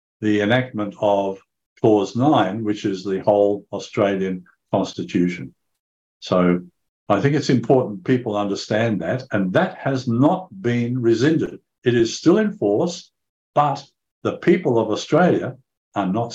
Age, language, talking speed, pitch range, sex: 60-79, English, 135 wpm, 105-130 Hz, male